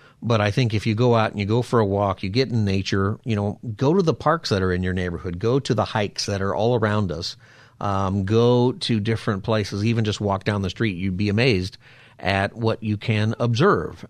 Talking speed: 240 wpm